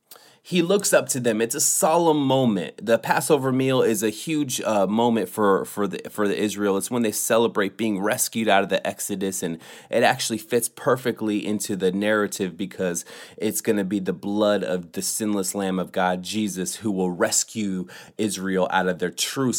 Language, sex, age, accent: English, male, 30-49, American